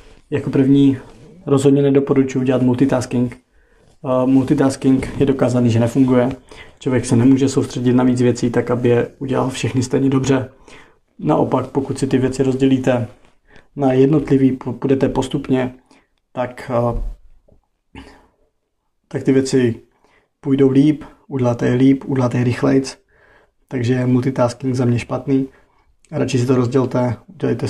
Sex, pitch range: male, 125-135 Hz